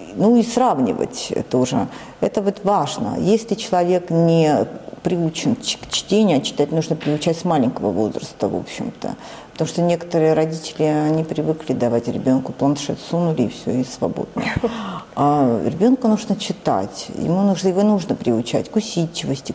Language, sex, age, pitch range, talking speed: Russian, female, 50-69, 155-210 Hz, 145 wpm